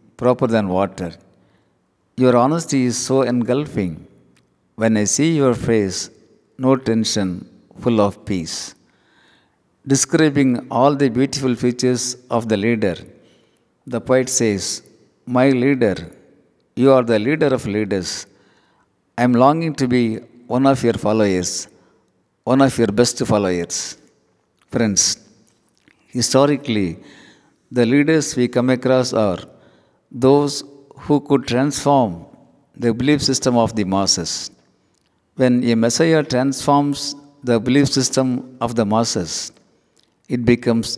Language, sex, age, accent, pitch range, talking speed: Tamil, male, 50-69, native, 110-135 Hz, 120 wpm